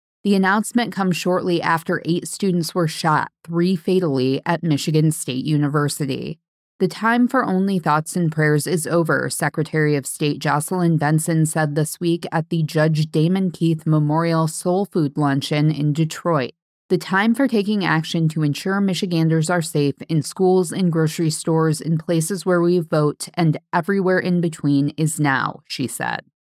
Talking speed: 160 wpm